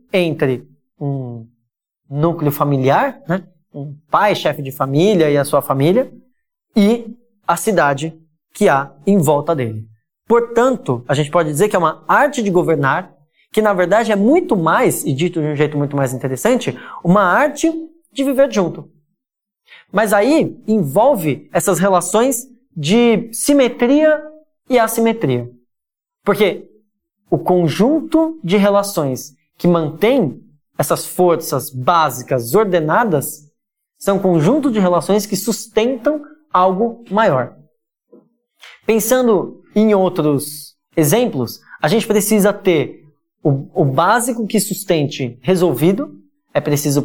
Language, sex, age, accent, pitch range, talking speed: Portuguese, male, 20-39, Brazilian, 150-220 Hz, 125 wpm